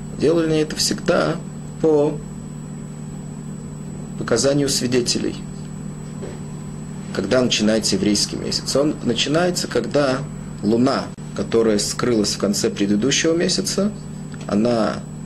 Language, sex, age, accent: Russian, male, 30-49, native